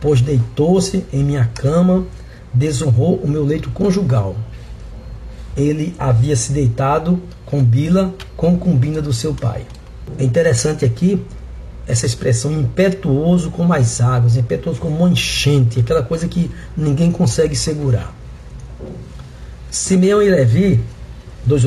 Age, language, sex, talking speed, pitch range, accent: 60-79, Portuguese, male, 120 wpm, 115-165 Hz, Brazilian